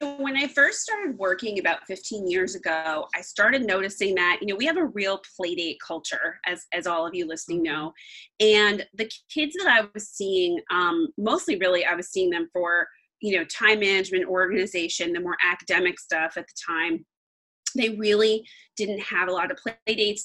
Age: 30-49